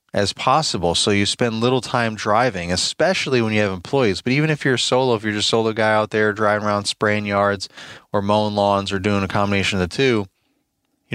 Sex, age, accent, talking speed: male, 20-39, American, 220 wpm